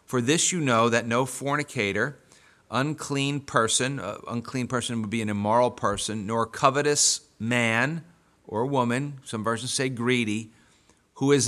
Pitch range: 115-145 Hz